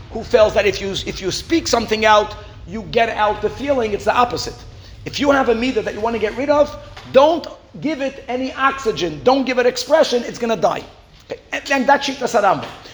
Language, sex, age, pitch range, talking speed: English, male, 40-59, 210-270 Hz, 225 wpm